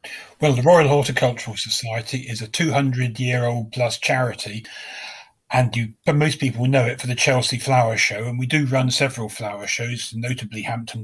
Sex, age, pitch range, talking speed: male, 40-59, 115-130 Hz, 170 wpm